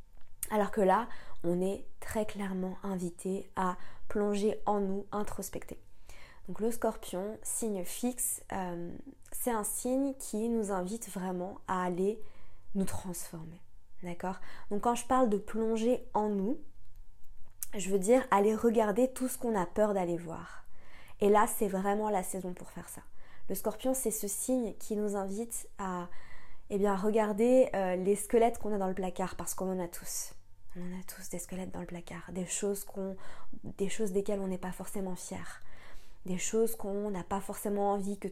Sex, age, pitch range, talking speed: female, 20-39, 180-210 Hz, 170 wpm